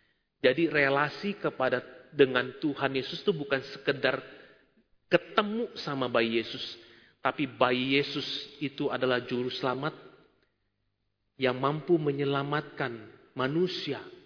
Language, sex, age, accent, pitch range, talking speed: Indonesian, male, 40-59, native, 130-165 Hz, 100 wpm